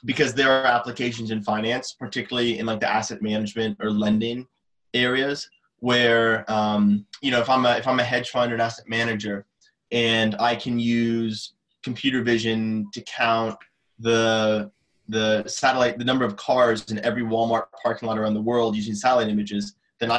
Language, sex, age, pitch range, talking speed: English, male, 20-39, 110-125 Hz, 170 wpm